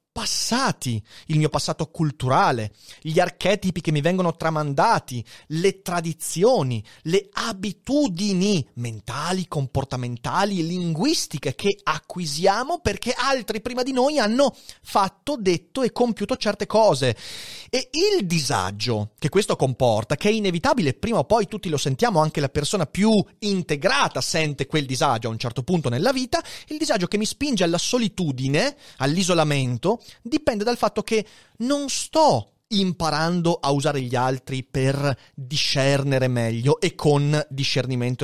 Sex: male